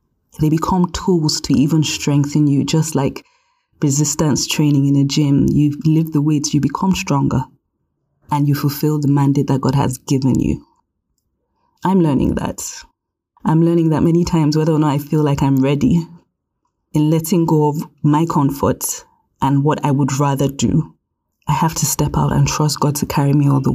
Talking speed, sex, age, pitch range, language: 180 wpm, female, 20-39, 145-160 Hz, English